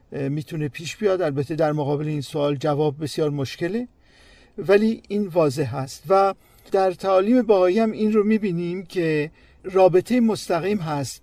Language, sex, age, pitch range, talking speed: Persian, male, 50-69, 145-205 Hz, 145 wpm